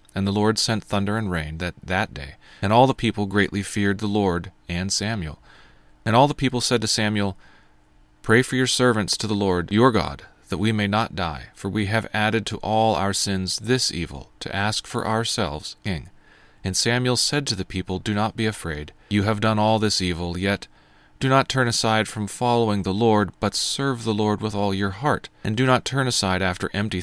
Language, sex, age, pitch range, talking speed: English, male, 40-59, 95-115 Hz, 215 wpm